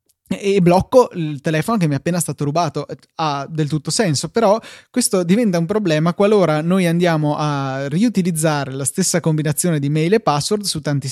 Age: 20-39